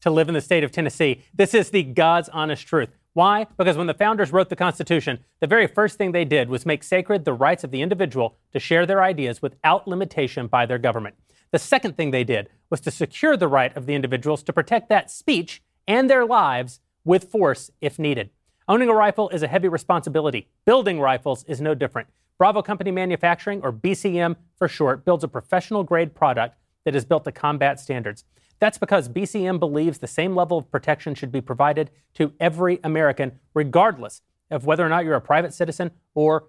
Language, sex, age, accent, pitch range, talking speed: English, male, 30-49, American, 140-180 Hz, 200 wpm